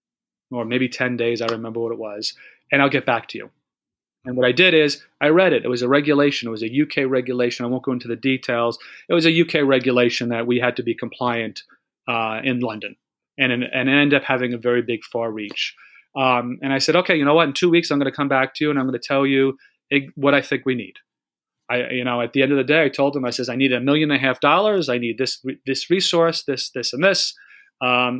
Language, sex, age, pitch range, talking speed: English, male, 30-49, 125-150 Hz, 260 wpm